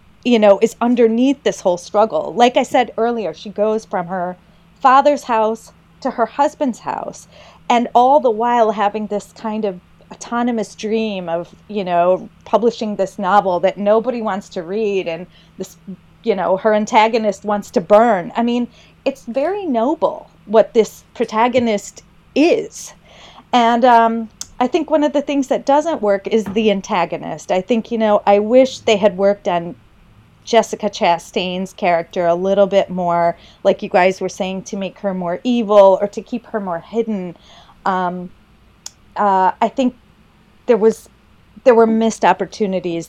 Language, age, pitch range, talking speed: English, 30-49, 185-230 Hz, 165 wpm